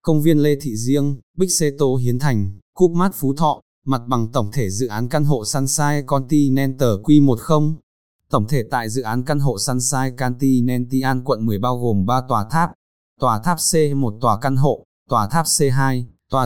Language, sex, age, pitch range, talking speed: Vietnamese, male, 20-39, 115-140 Hz, 190 wpm